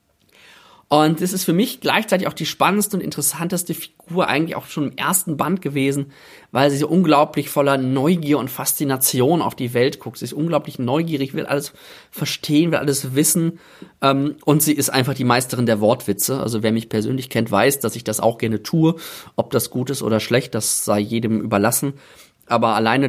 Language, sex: German, male